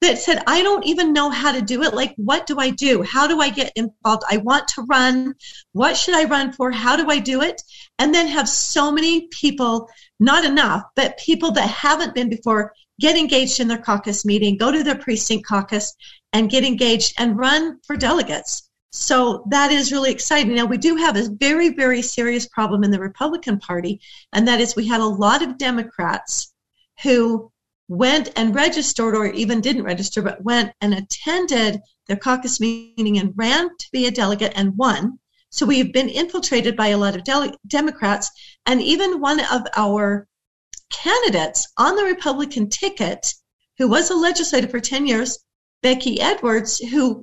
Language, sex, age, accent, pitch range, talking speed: English, female, 40-59, American, 220-290 Hz, 185 wpm